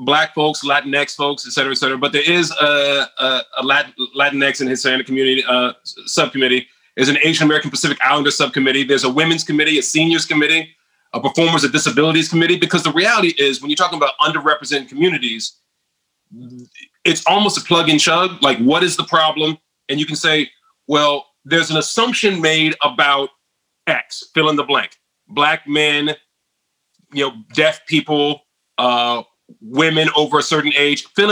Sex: male